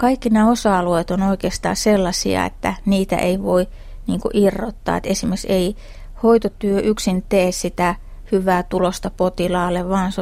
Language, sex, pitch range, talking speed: Finnish, female, 185-215 Hz, 140 wpm